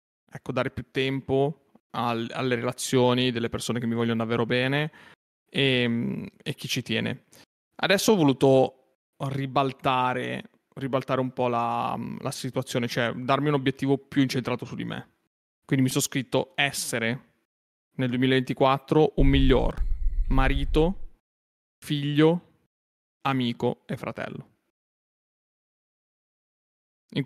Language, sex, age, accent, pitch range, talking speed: Italian, male, 20-39, native, 125-145 Hz, 115 wpm